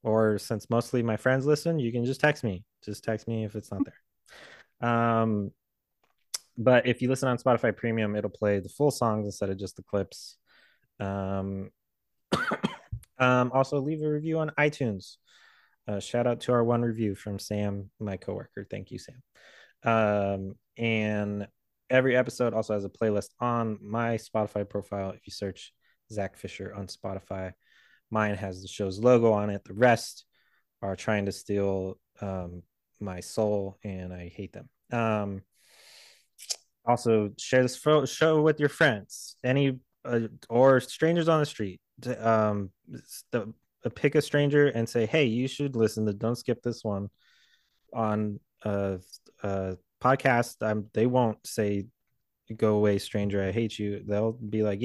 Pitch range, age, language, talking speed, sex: 100-125 Hz, 20-39, English, 160 wpm, male